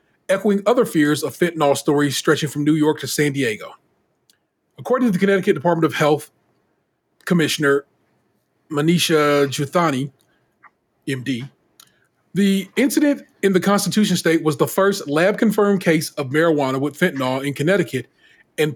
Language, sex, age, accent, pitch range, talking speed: English, male, 40-59, American, 145-195 Hz, 135 wpm